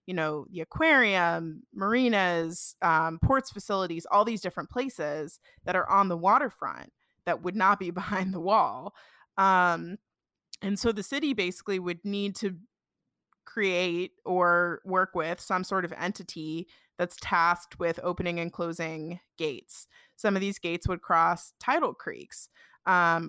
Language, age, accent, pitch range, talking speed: English, 20-39, American, 170-200 Hz, 145 wpm